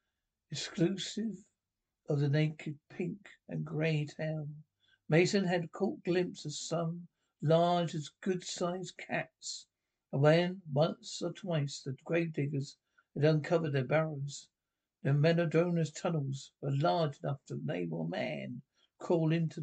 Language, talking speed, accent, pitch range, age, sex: English, 130 wpm, British, 140-170 Hz, 60-79, male